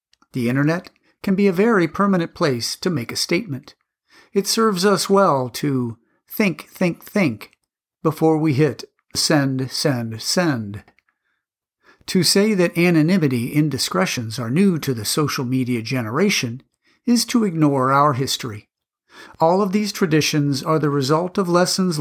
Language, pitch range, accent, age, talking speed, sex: English, 130-185 Hz, American, 50-69, 140 wpm, male